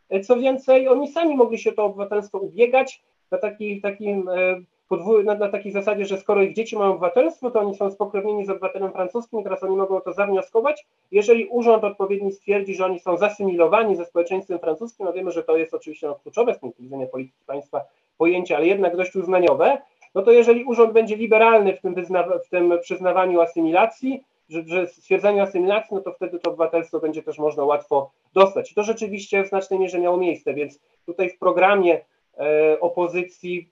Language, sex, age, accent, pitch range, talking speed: Polish, male, 40-59, native, 170-215 Hz, 180 wpm